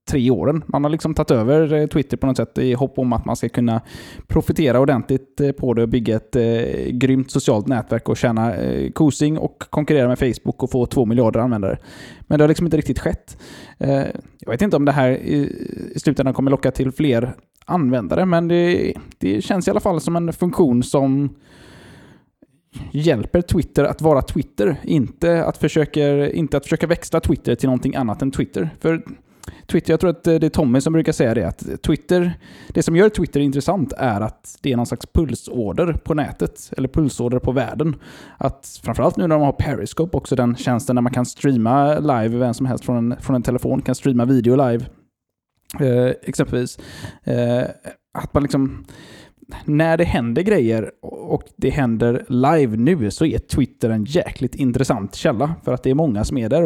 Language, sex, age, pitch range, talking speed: Swedish, male, 20-39, 125-155 Hz, 190 wpm